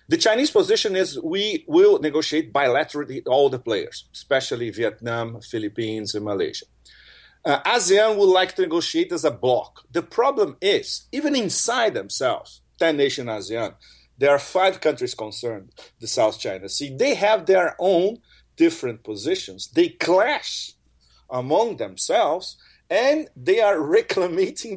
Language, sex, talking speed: English, male, 140 wpm